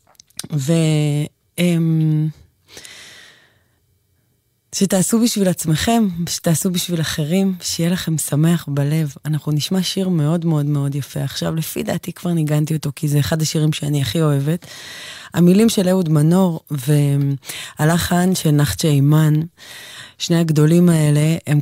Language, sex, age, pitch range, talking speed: English, female, 20-39, 140-170 Hz, 115 wpm